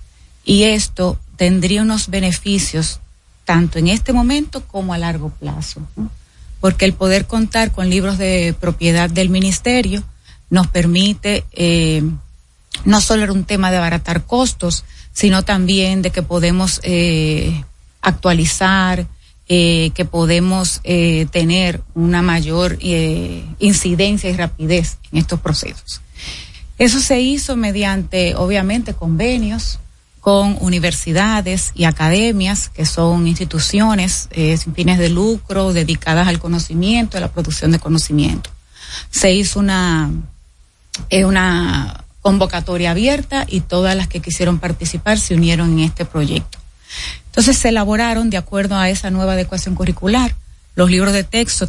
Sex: female